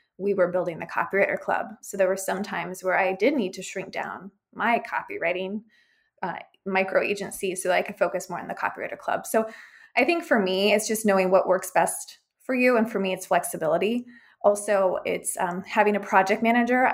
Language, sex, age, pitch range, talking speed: English, female, 20-39, 190-235 Hz, 200 wpm